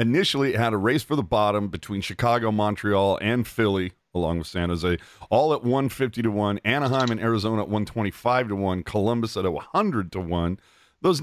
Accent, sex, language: American, male, English